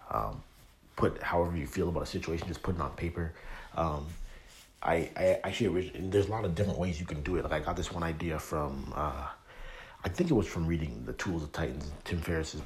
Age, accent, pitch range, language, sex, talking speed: 30-49, American, 80-90 Hz, English, male, 225 wpm